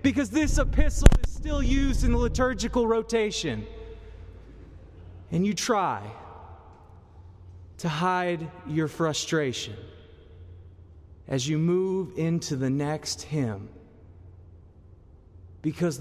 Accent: American